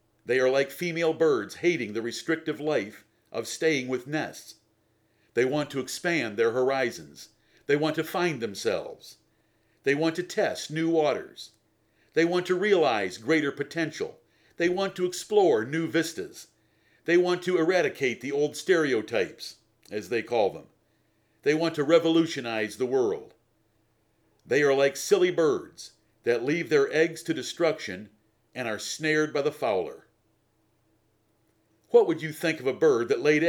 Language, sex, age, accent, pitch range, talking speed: English, male, 50-69, American, 120-170 Hz, 150 wpm